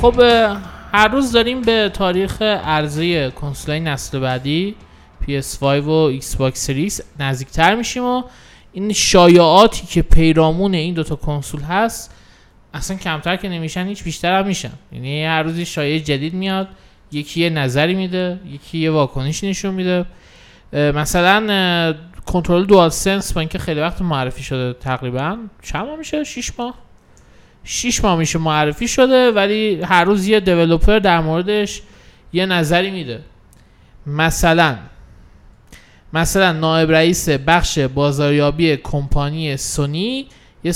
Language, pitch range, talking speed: Persian, 150-195 Hz, 130 wpm